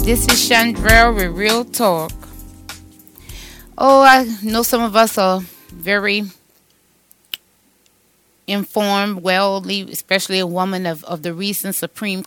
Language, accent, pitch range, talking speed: English, American, 180-210 Hz, 115 wpm